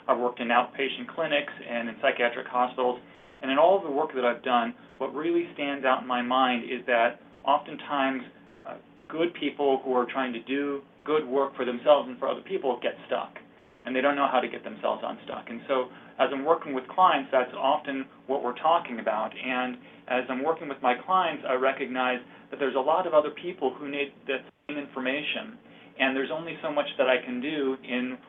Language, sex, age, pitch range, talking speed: English, male, 30-49, 125-140 Hz, 210 wpm